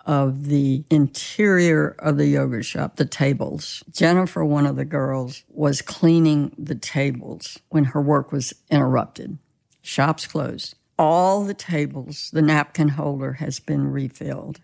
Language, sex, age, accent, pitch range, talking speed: English, female, 60-79, American, 140-160 Hz, 140 wpm